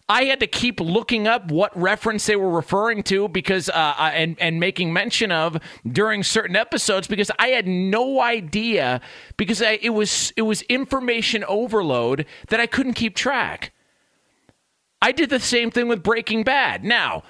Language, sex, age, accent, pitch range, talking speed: English, male, 40-59, American, 180-235 Hz, 170 wpm